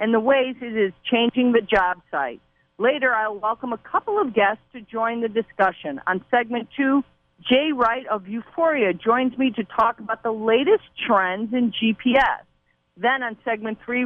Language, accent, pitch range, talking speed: English, American, 205-260 Hz, 175 wpm